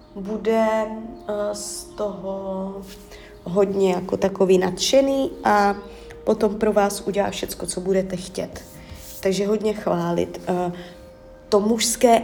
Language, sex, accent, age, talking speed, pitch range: Czech, female, native, 30-49, 115 wpm, 185-245 Hz